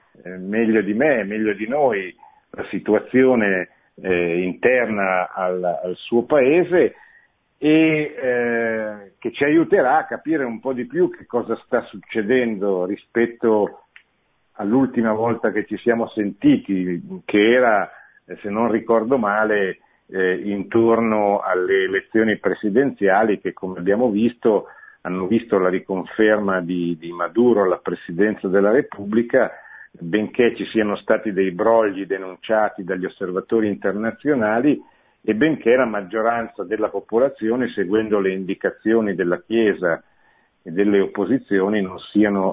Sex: male